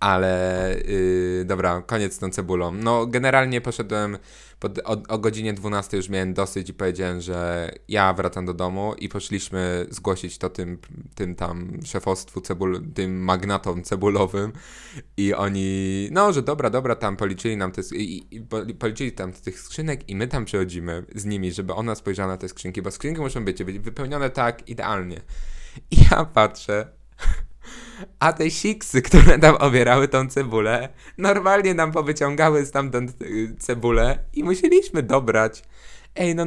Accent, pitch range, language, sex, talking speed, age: native, 95-135 Hz, Polish, male, 160 wpm, 20-39